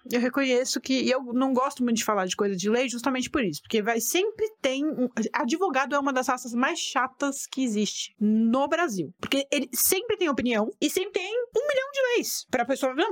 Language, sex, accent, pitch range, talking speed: Portuguese, female, Brazilian, 225-310 Hz, 225 wpm